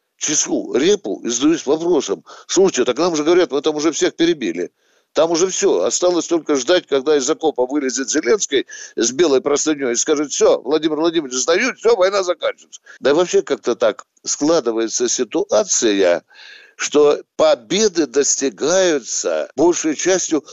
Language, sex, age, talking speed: Russian, male, 60-79, 145 wpm